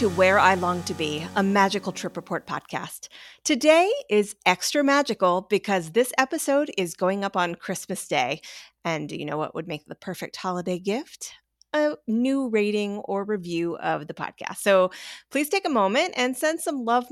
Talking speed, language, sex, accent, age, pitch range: 175 wpm, English, female, American, 30-49, 180-240 Hz